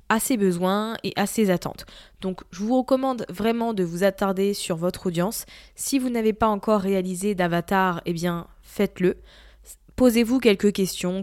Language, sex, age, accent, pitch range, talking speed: French, female, 20-39, French, 180-210 Hz, 170 wpm